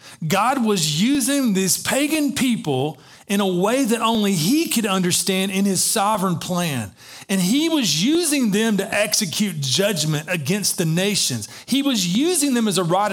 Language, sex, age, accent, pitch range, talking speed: English, male, 40-59, American, 135-190 Hz, 165 wpm